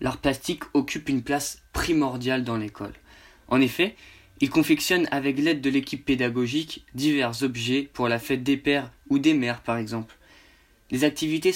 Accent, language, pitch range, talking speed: French, English, 125-145 Hz, 160 wpm